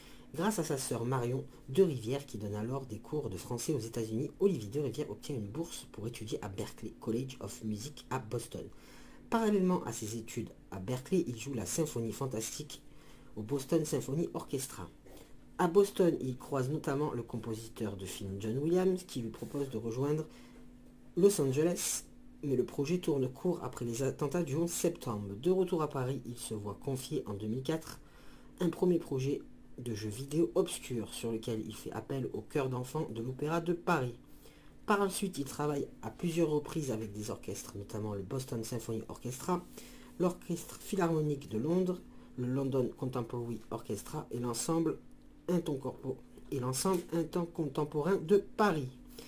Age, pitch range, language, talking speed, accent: 40-59, 115-170 Hz, French, 165 wpm, French